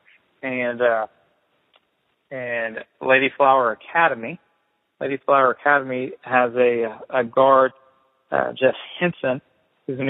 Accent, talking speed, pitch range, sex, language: American, 105 wpm, 125-145 Hz, male, English